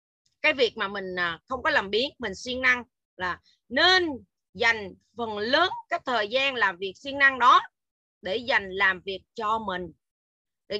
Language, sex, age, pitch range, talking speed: Vietnamese, female, 20-39, 195-285 Hz, 170 wpm